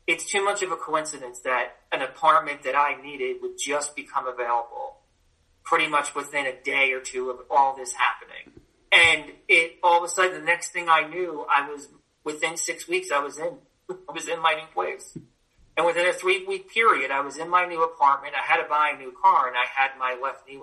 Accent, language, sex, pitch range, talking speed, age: American, English, male, 140-185 Hz, 225 wpm, 40-59